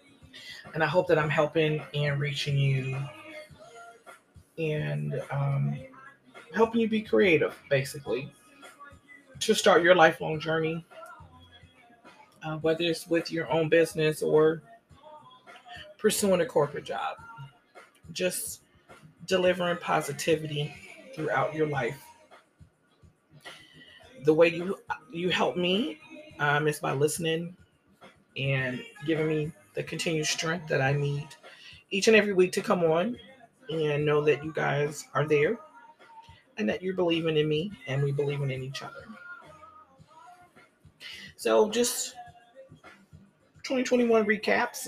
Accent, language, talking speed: American, English, 120 wpm